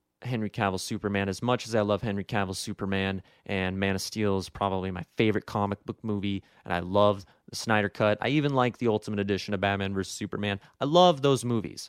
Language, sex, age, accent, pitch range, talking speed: English, male, 20-39, American, 100-125 Hz, 210 wpm